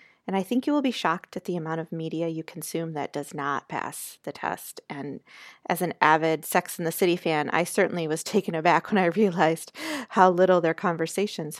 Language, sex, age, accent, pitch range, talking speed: English, female, 30-49, American, 160-190 Hz, 210 wpm